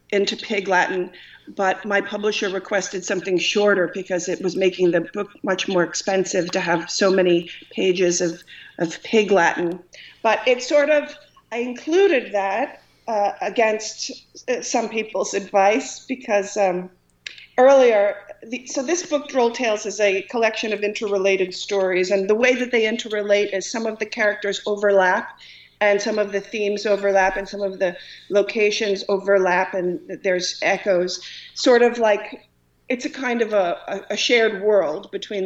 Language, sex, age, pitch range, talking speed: English, female, 40-59, 190-225 Hz, 155 wpm